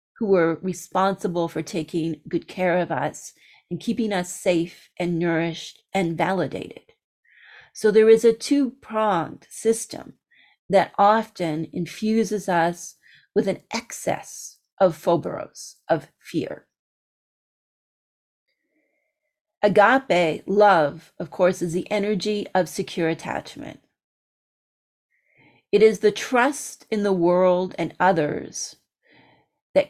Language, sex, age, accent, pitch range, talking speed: English, female, 40-59, American, 175-225 Hz, 110 wpm